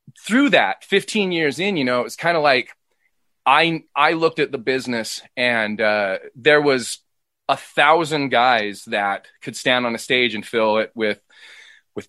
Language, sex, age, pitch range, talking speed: English, male, 20-39, 110-140 Hz, 175 wpm